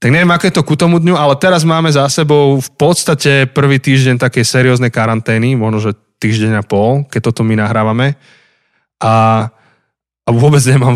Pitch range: 110-135 Hz